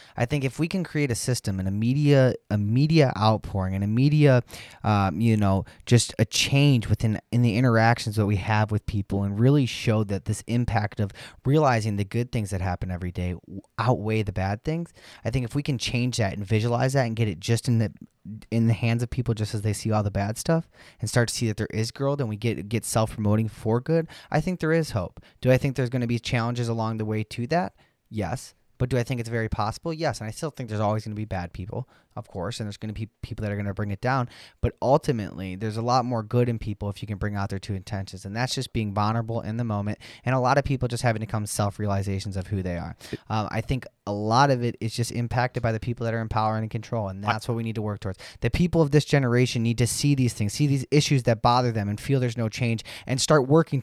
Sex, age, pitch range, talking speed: male, 20-39, 105-125 Hz, 265 wpm